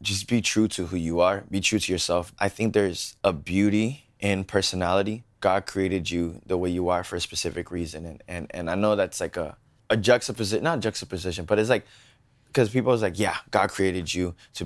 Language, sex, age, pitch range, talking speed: English, male, 20-39, 90-110 Hz, 215 wpm